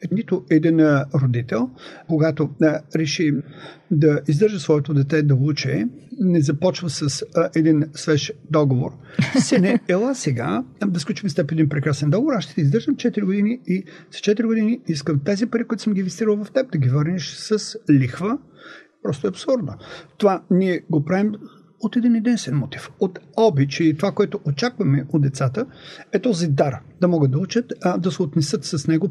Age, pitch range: 50-69, 150-200 Hz